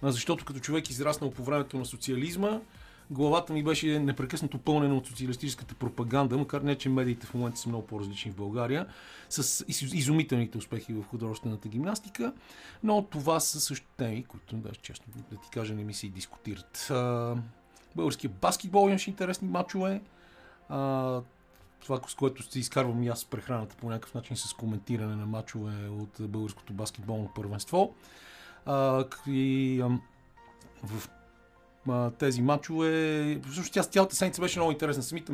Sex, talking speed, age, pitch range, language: male, 150 wpm, 40-59, 115-145 Hz, Bulgarian